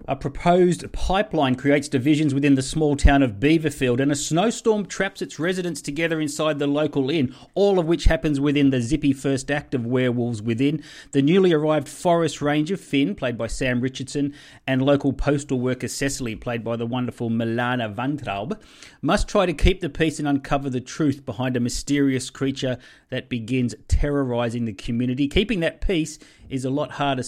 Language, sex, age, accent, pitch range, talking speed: English, male, 40-59, Australian, 125-150 Hz, 180 wpm